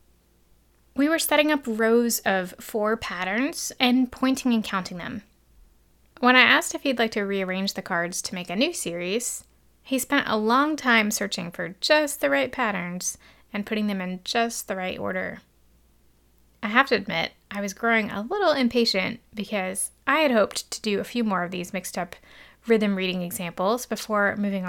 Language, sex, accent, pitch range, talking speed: English, female, American, 185-250 Hz, 180 wpm